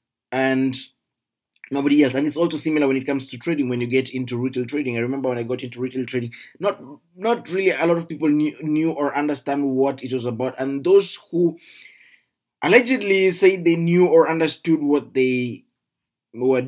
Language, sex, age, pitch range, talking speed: English, male, 20-39, 130-160 Hz, 190 wpm